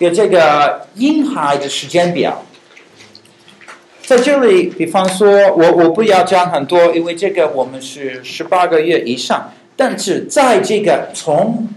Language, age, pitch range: Chinese, 50-69, 140-205 Hz